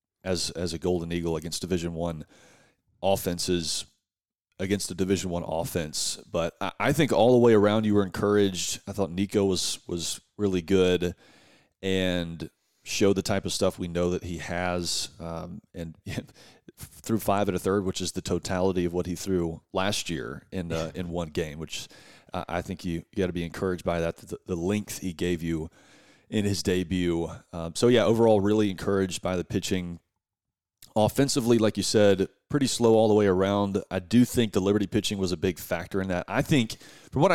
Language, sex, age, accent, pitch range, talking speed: English, male, 30-49, American, 90-105 Hz, 195 wpm